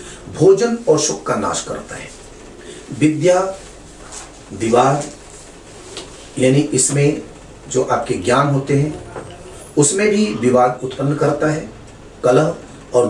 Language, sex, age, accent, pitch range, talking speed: Hindi, male, 40-59, native, 125-190 Hz, 110 wpm